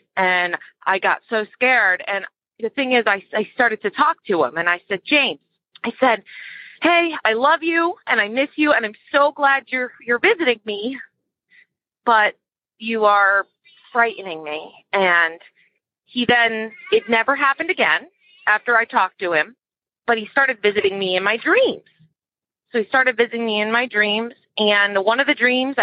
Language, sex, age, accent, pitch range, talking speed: English, female, 30-49, American, 205-280 Hz, 175 wpm